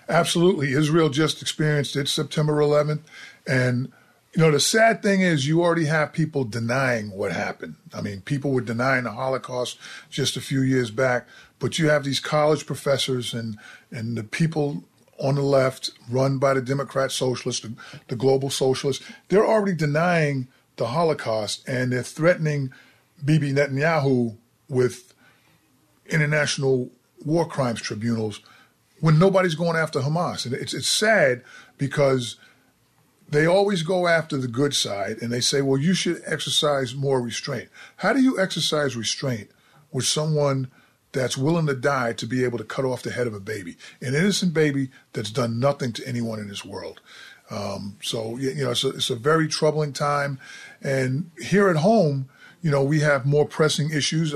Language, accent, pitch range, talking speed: English, American, 125-155 Hz, 165 wpm